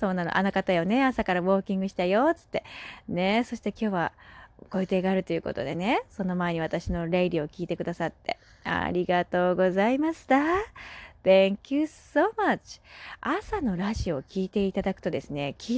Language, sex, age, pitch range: Japanese, female, 20-39, 190-265 Hz